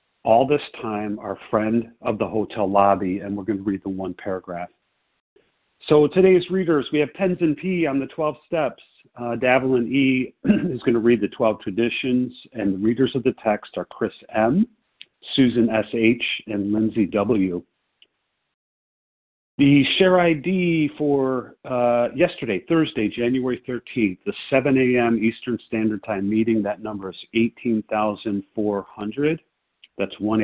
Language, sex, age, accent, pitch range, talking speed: English, male, 50-69, American, 105-140 Hz, 145 wpm